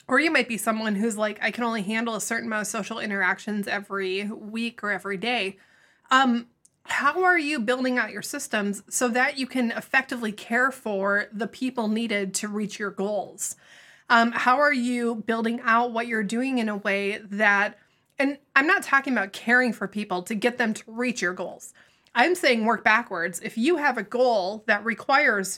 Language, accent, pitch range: English, American, 205-245 Hz